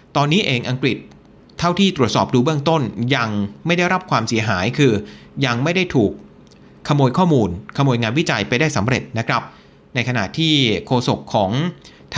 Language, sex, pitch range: Thai, male, 115-170 Hz